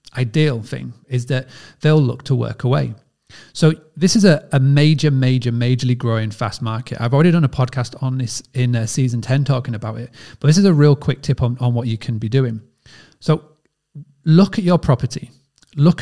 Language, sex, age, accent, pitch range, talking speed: English, male, 30-49, British, 125-150 Hz, 200 wpm